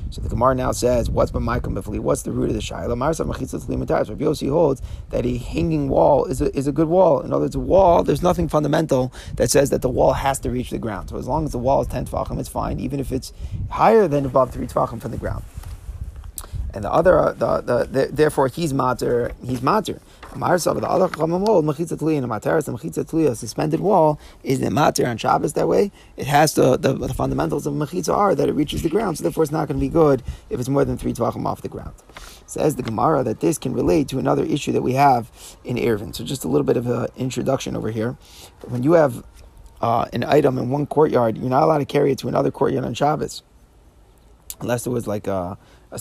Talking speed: 225 wpm